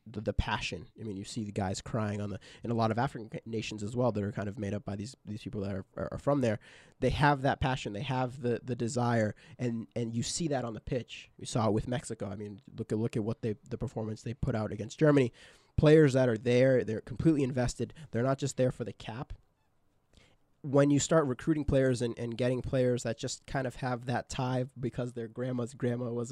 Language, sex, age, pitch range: English, male, 20-39, 110-130 Hz